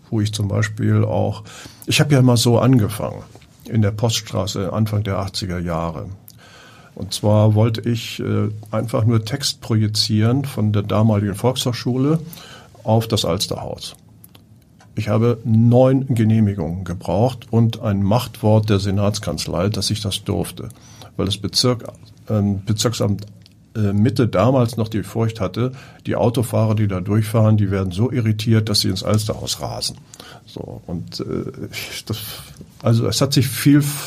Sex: male